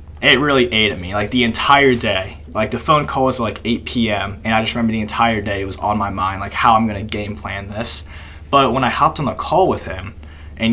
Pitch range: 100-120 Hz